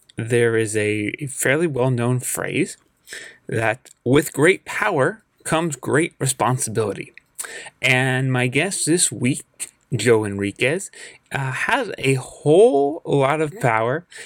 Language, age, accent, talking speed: English, 30-49, American, 115 wpm